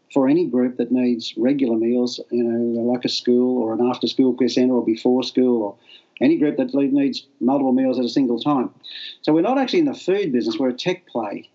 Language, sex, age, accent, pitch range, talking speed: English, male, 40-59, Australian, 120-140 Hz, 215 wpm